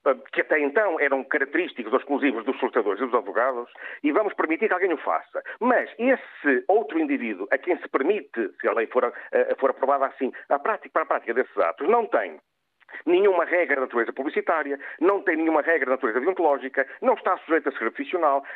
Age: 50-69